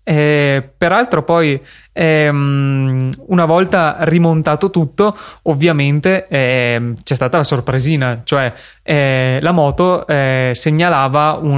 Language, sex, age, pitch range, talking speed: Italian, male, 20-39, 130-155 Hz, 105 wpm